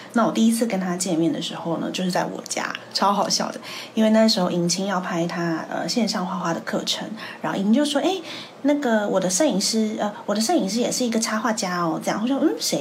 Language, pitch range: Chinese, 185-245 Hz